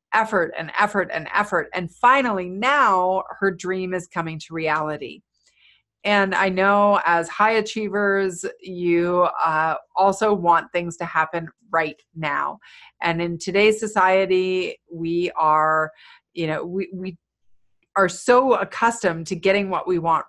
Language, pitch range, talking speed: English, 165-195 Hz, 140 wpm